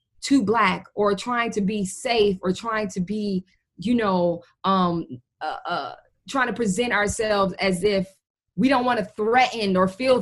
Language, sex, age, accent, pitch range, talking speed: English, female, 20-39, American, 180-230 Hz, 170 wpm